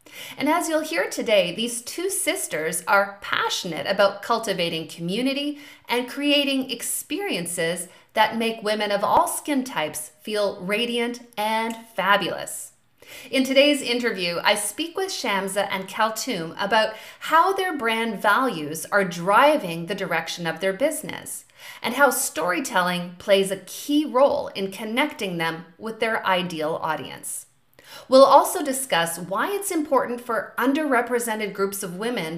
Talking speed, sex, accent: 135 wpm, female, American